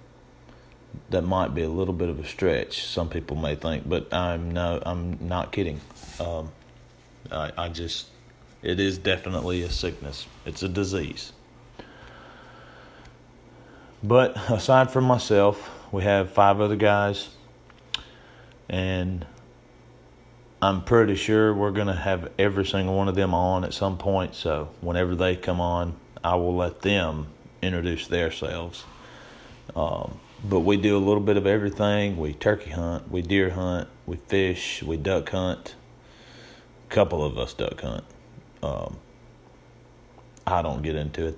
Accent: American